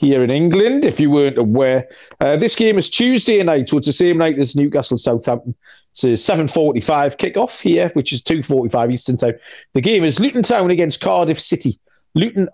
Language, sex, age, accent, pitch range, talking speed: English, male, 30-49, British, 135-165 Hz, 190 wpm